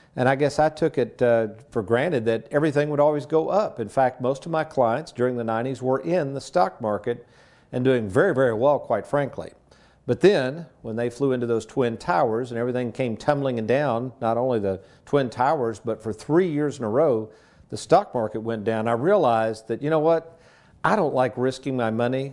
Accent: American